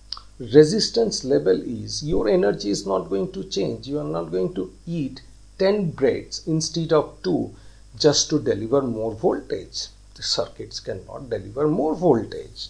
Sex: male